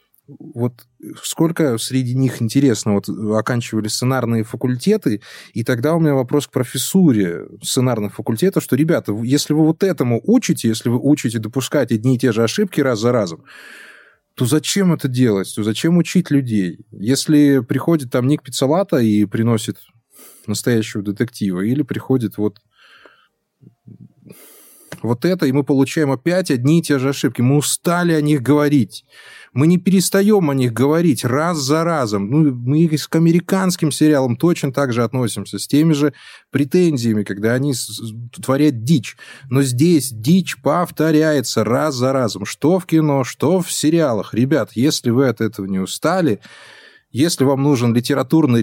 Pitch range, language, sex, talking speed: 115-155 Hz, Russian, male, 155 wpm